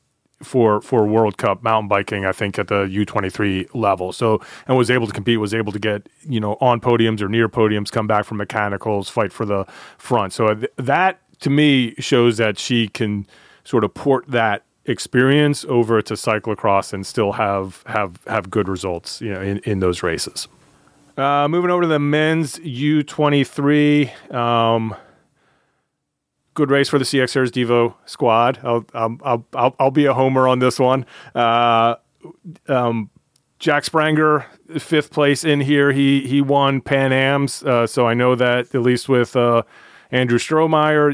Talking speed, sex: 175 wpm, male